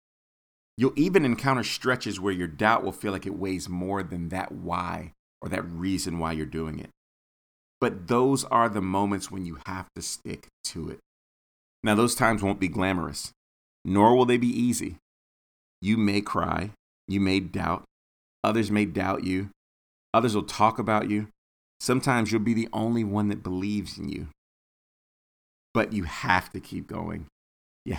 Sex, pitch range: male, 80-110 Hz